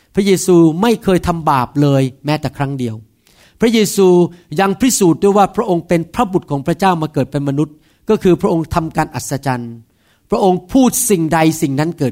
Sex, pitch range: male, 150-190 Hz